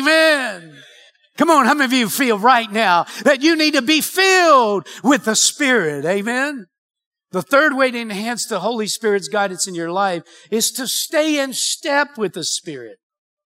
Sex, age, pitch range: male, 60-79, 180-240 Hz